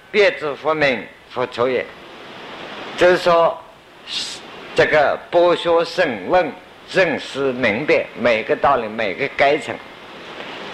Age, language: 50-69, Chinese